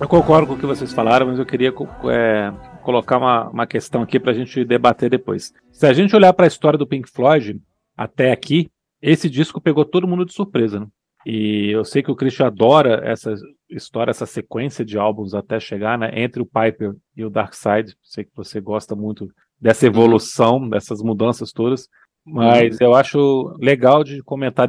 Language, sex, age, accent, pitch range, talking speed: Portuguese, male, 40-59, Brazilian, 115-155 Hz, 195 wpm